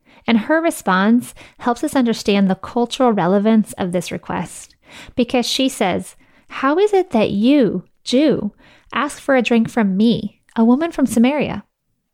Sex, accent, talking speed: female, American, 155 wpm